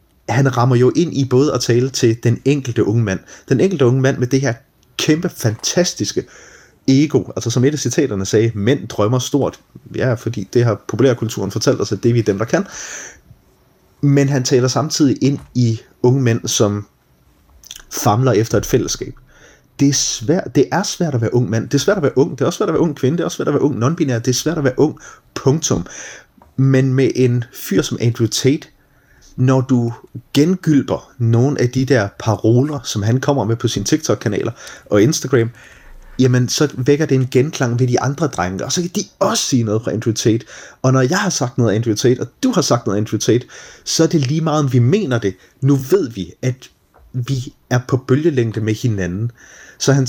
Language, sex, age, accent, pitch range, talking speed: Danish, male, 30-49, native, 115-140 Hz, 210 wpm